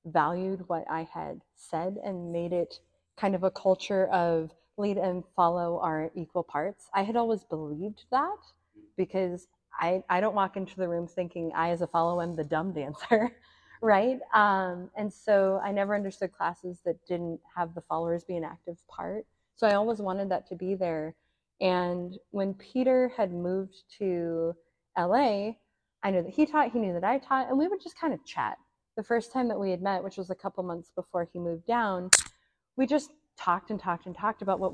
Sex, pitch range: female, 175-200 Hz